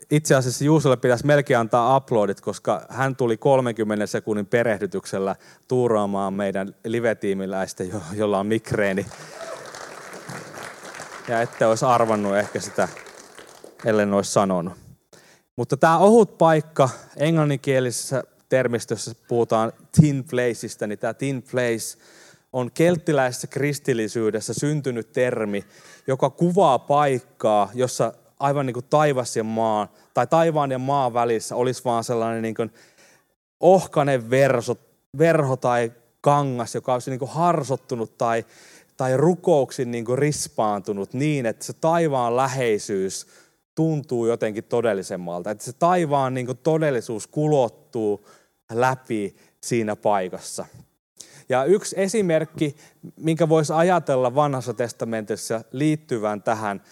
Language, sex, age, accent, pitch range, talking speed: Finnish, male, 30-49, native, 115-145 Hz, 110 wpm